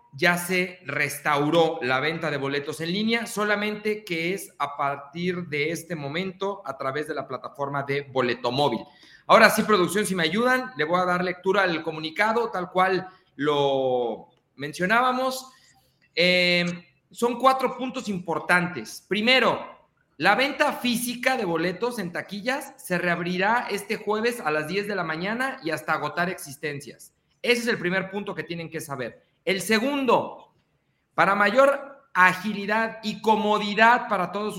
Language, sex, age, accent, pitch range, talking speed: Spanish, male, 40-59, Mexican, 165-225 Hz, 150 wpm